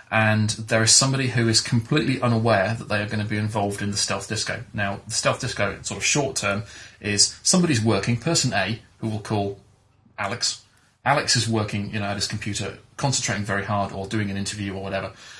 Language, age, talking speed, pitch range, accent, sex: English, 30-49, 210 wpm, 100-120 Hz, British, male